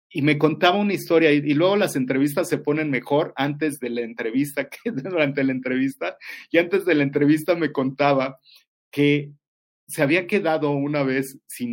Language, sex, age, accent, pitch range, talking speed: English, male, 40-59, Mexican, 130-155 Hz, 175 wpm